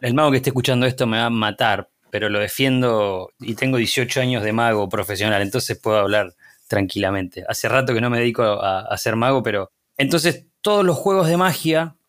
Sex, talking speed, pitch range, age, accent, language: male, 200 wpm, 115-155 Hz, 20-39, Argentinian, Spanish